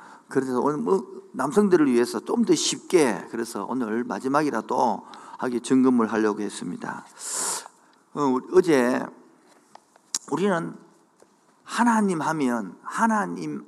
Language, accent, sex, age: Korean, native, male, 50-69